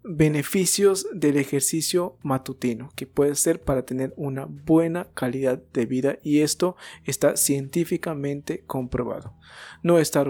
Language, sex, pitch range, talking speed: Spanish, male, 130-165 Hz, 120 wpm